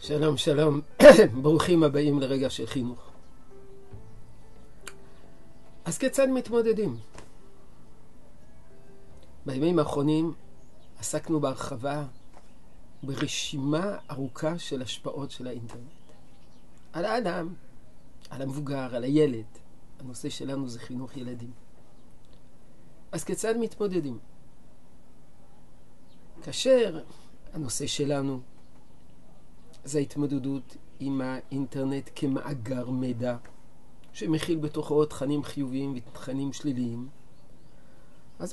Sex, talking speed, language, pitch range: male, 80 wpm, Hebrew, 130-155 Hz